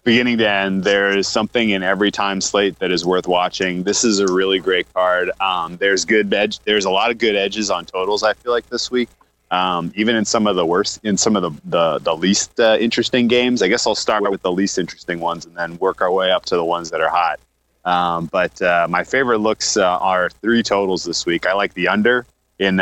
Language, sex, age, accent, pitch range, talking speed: English, male, 30-49, American, 95-110 Hz, 240 wpm